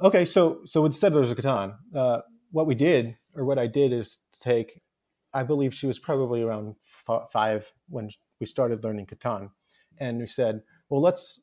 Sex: male